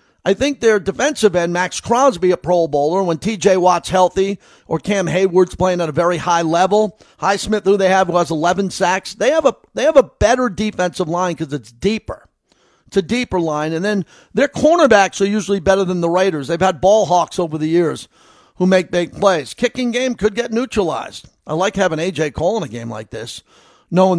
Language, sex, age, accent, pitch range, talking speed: English, male, 50-69, American, 175-220 Hz, 210 wpm